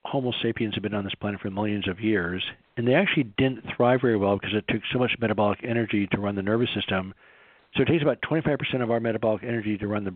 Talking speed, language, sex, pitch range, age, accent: 250 wpm, English, male, 105-130 Hz, 50-69, American